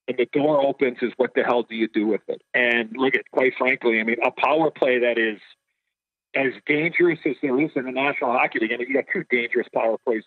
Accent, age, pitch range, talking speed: American, 50-69, 115-150 Hz, 245 wpm